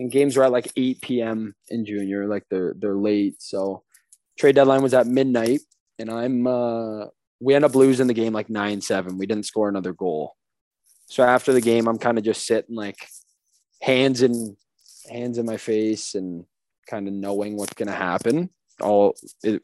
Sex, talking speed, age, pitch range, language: male, 185 wpm, 20-39, 105-125 Hz, English